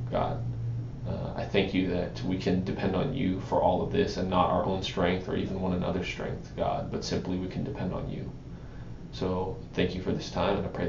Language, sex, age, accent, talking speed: English, male, 20-39, American, 230 wpm